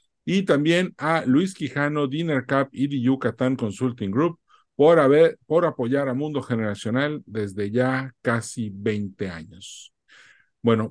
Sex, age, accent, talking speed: male, 50-69, Mexican, 140 wpm